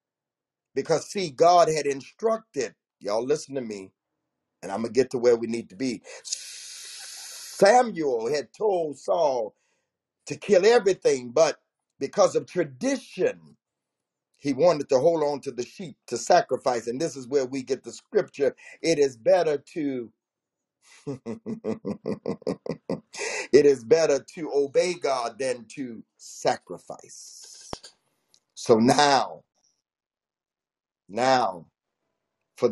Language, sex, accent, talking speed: English, male, American, 120 wpm